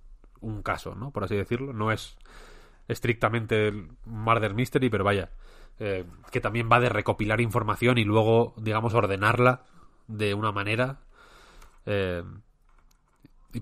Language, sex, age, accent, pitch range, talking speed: Spanish, male, 20-39, Spanish, 100-115 Hz, 130 wpm